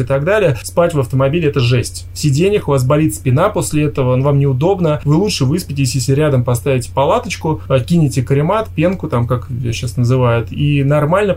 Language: Russian